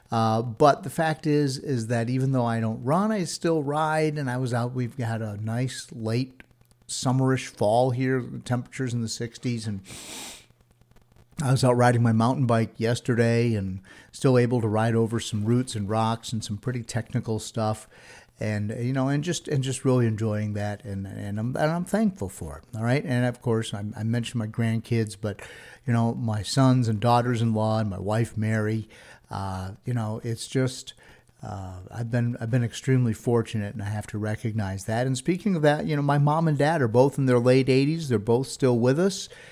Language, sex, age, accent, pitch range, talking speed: English, male, 50-69, American, 115-130 Hz, 200 wpm